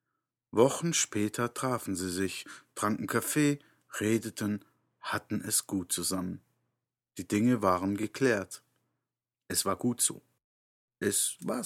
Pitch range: 95-125 Hz